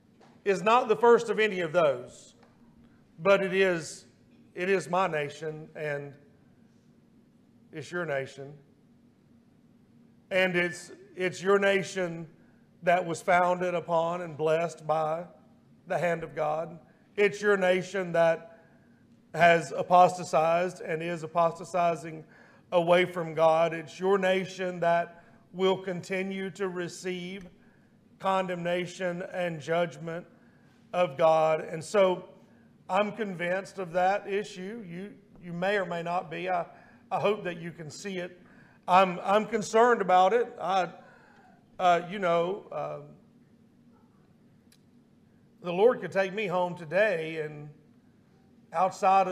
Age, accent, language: 50-69, American, English